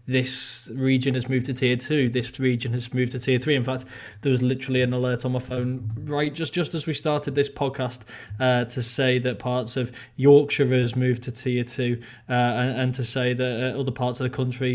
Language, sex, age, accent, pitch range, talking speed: English, male, 20-39, British, 125-135 Hz, 230 wpm